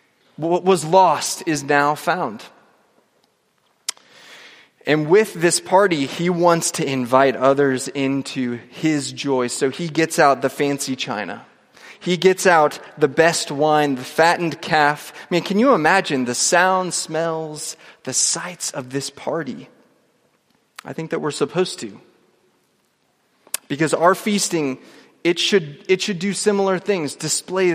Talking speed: 140 wpm